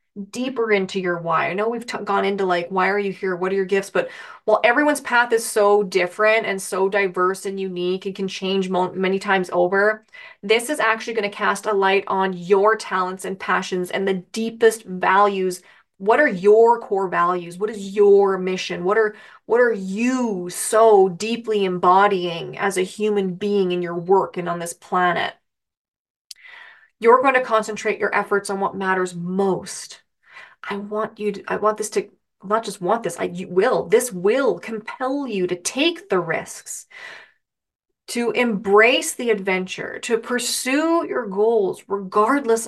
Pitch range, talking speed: 190-230 Hz, 170 wpm